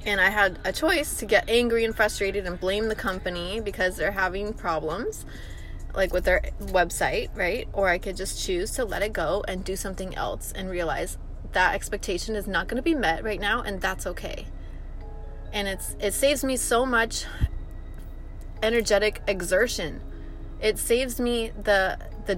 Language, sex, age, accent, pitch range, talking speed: English, female, 20-39, American, 185-225 Hz, 175 wpm